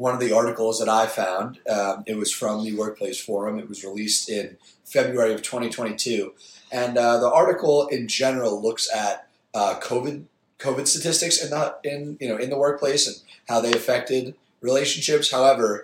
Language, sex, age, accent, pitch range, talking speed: English, male, 30-49, American, 110-130 Hz, 180 wpm